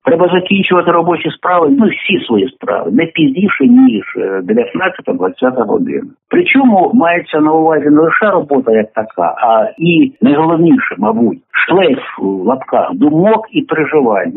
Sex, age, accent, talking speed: male, 60-79, native, 135 wpm